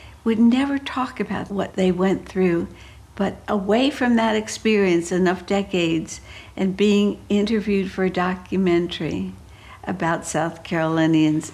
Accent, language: American, English